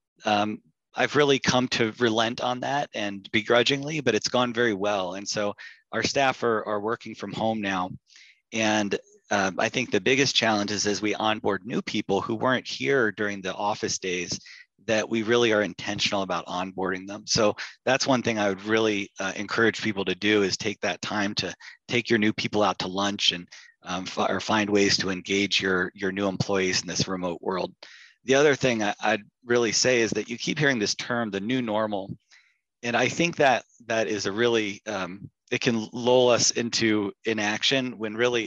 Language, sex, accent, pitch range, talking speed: English, male, American, 100-120 Hz, 195 wpm